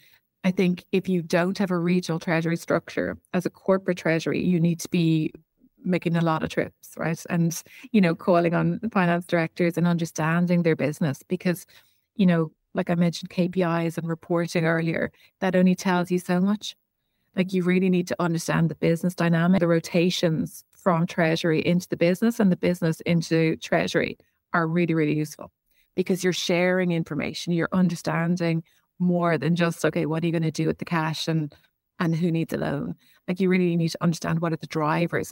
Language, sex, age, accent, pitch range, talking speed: English, female, 30-49, Irish, 165-180 Hz, 190 wpm